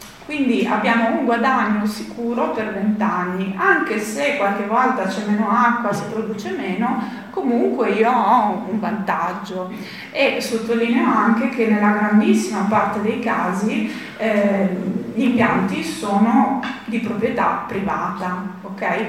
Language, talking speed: Italian, 125 wpm